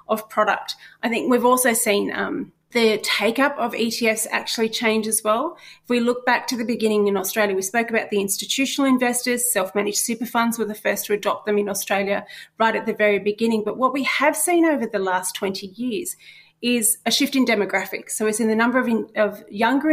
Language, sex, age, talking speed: English, female, 30-49, 215 wpm